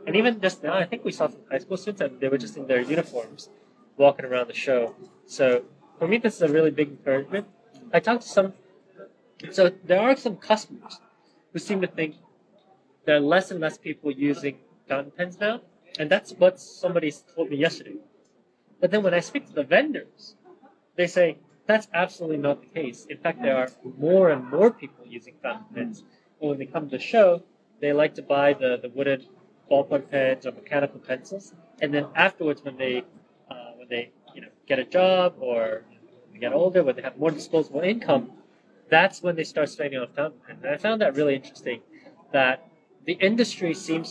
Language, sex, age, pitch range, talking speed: English, male, 30-49, 140-195 Hz, 205 wpm